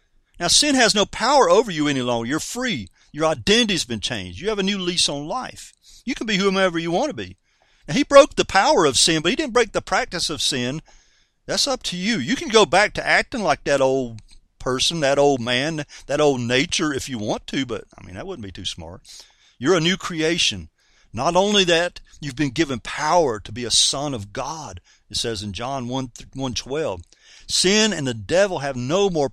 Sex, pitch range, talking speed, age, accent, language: male, 135-210 Hz, 215 wpm, 50-69, American, English